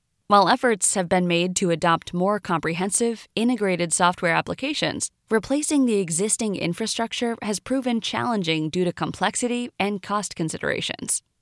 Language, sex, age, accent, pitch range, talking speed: English, female, 20-39, American, 170-230 Hz, 130 wpm